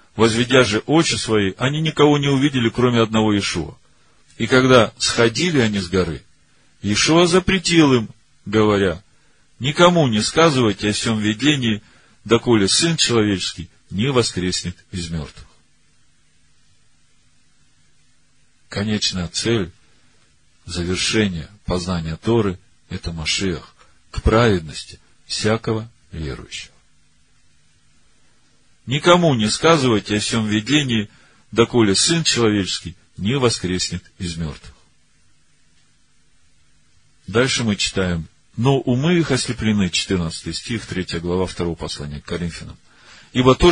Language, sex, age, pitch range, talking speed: Russian, male, 40-59, 90-125 Hz, 105 wpm